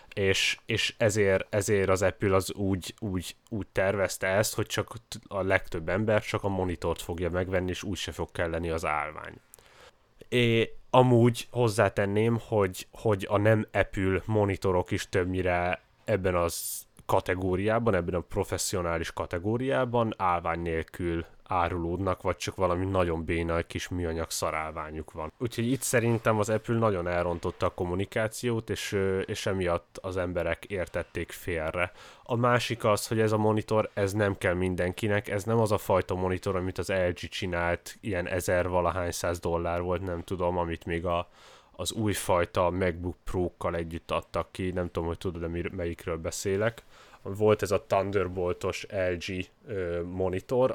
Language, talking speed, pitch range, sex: Hungarian, 150 wpm, 85-105 Hz, male